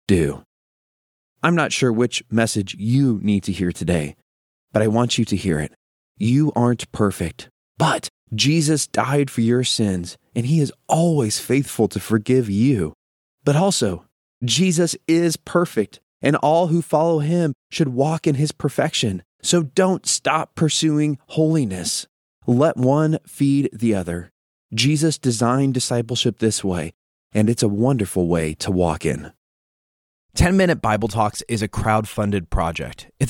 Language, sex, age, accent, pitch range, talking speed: English, male, 20-39, American, 100-150 Hz, 150 wpm